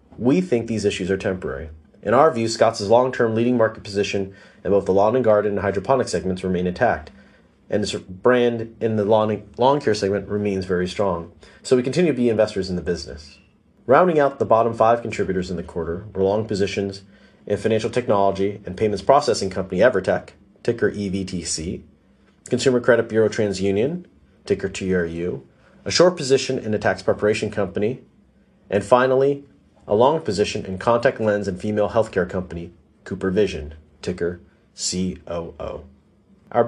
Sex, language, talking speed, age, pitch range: male, English, 160 wpm, 30-49, 95-115 Hz